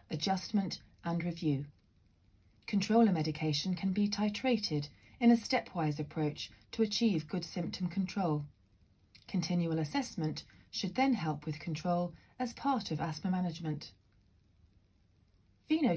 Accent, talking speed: British, 115 wpm